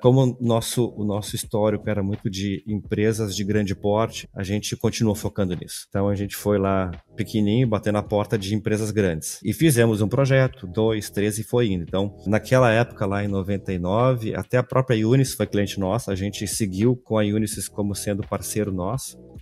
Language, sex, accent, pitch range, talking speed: Portuguese, male, Brazilian, 100-120 Hz, 190 wpm